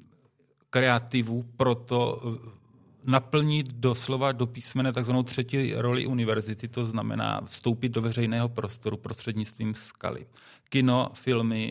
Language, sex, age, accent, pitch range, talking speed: Czech, male, 40-59, native, 110-125 Hz, 105 wpm